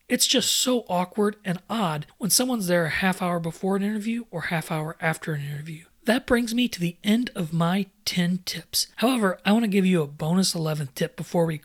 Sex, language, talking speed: male, English, 220 wpm